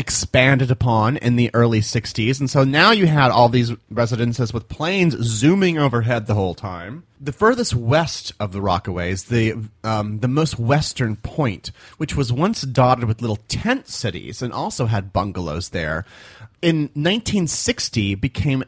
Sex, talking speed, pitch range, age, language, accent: male, 155 wpm, 110-140 Hz, 30-49, English, American